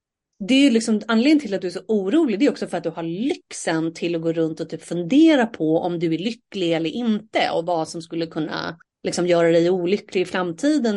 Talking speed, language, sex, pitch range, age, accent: 240 wpm, Swedish, female, 170-230 Hz, 30-49, native